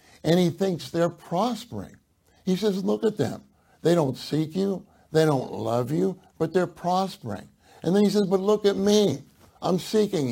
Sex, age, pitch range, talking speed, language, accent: male, 60-79, 130-180 Hz, 180 wpm, English, American